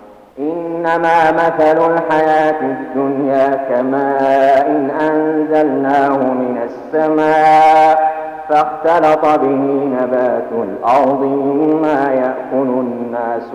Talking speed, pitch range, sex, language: 70 wpm, 130-160 Hz, male, Arabic